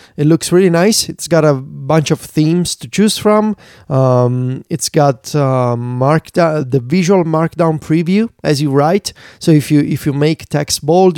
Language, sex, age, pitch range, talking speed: English, male, 30-49, 135-170 Hz, 175 wpm